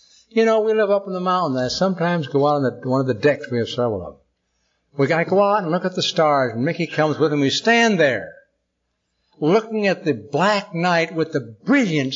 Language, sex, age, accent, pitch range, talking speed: English, male, 60-79, American, 135-210 Hz, 245 wpm